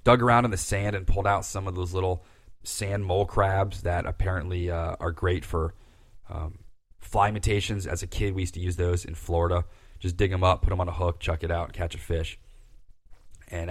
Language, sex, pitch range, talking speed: English, male, 85-105 Hz, 225 wpm